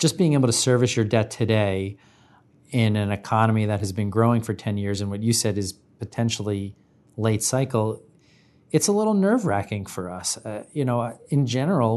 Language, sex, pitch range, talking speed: English, male, 105-125 Hz, 190 wpm